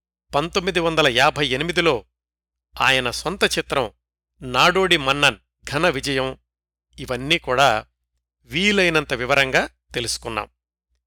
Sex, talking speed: male, 85 wpm